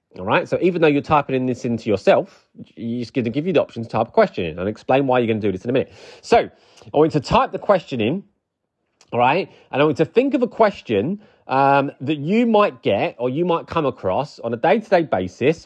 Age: 30-49